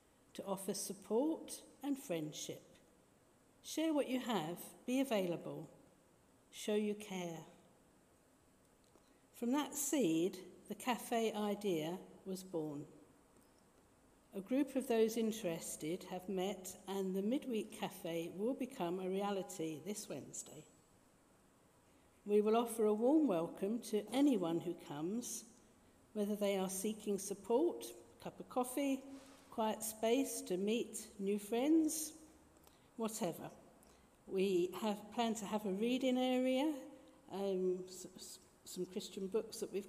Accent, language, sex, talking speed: British, English, female, 120 wpm